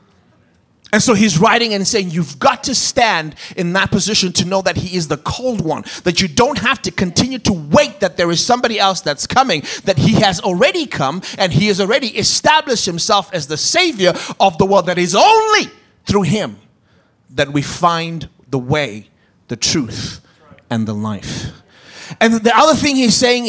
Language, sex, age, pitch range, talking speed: English, male, 30-49, 165-240 Hz, 190 wpm